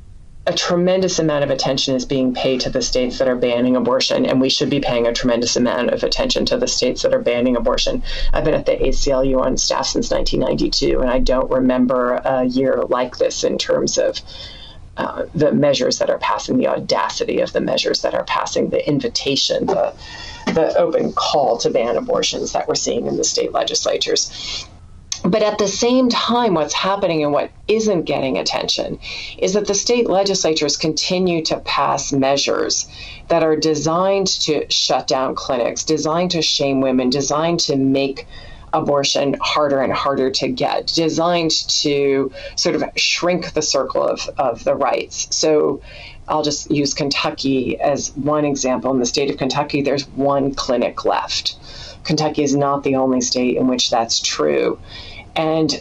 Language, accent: English, American